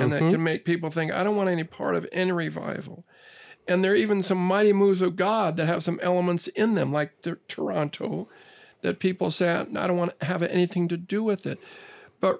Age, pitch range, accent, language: 50-69, 165-200 Hz, American, English